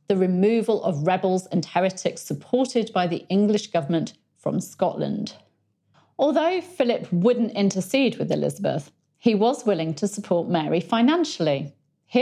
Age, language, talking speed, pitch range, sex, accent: 40-59, English, 135 wpm, 165-225 Hz, female, British